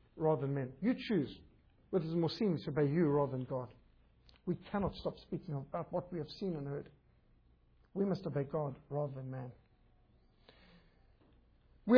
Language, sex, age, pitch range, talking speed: English, male, 60-79, 155-220 Hz, 170 wpm